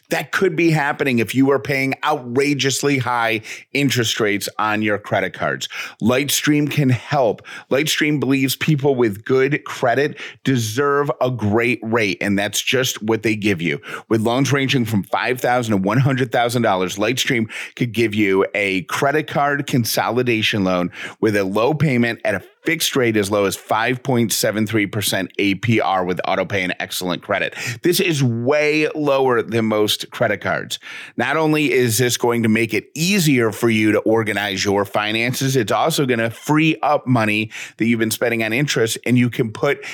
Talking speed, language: 165 wpm, English